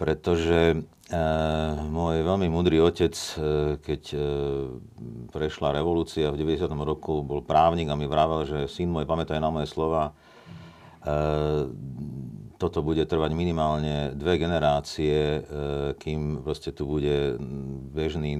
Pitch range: 75-80 Hz